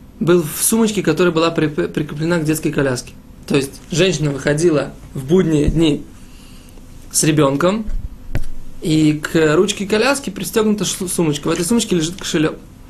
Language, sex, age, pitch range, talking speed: Russian, male, 20-39, 155-195 Hz, 135 wpm